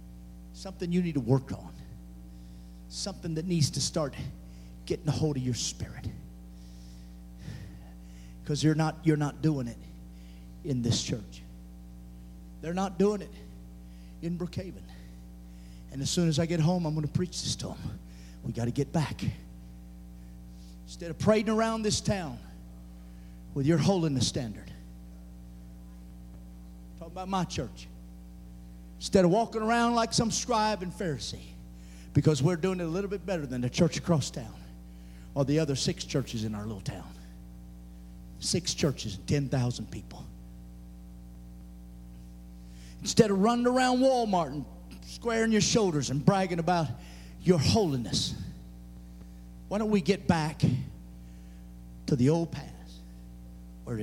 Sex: male